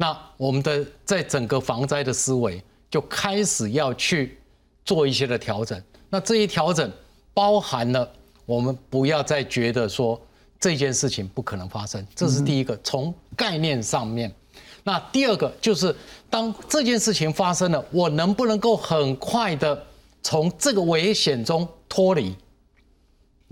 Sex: male